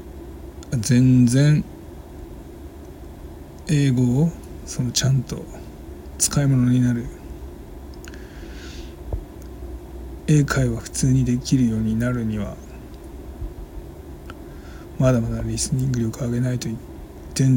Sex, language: male, Japanese